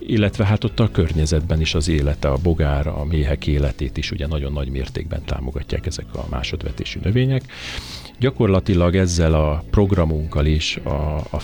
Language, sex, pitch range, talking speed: Hungarian, male, 75-95 Hz, 155 wpm